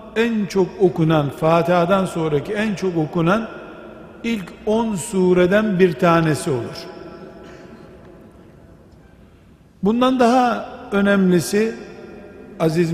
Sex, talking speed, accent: male, 85 wpm, native